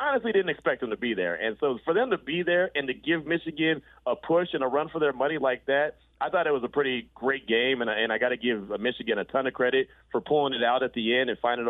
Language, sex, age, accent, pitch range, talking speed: English, male, 30-49, American, 120-145 Hz, 290 wpm